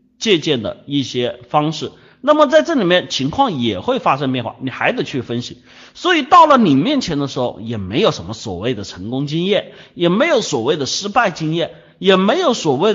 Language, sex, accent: Chinese, male, native